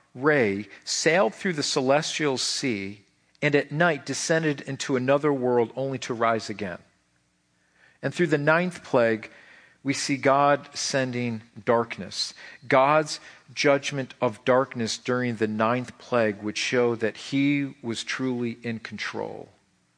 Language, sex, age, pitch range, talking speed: English, male, 50-69, 110-150 Hz, 130 wpm